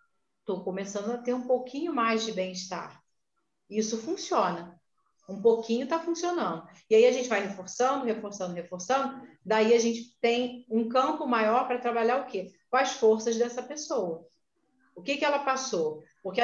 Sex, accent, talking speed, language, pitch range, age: female, Brazilian, 165 wpm, Portuguese, 190-250 Hz, 40-59